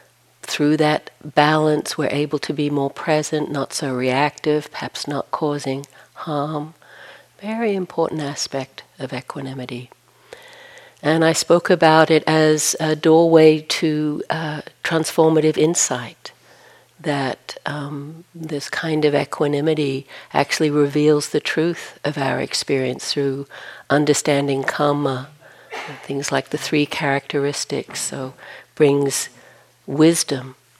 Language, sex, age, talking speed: English, female, 60-79, 110 wpm